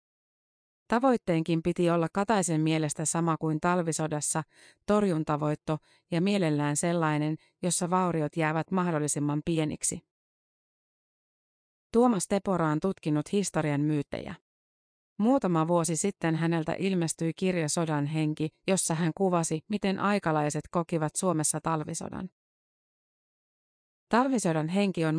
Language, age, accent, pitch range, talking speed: Finnish, 30-49, native, 155-185 Hz, 100 wpm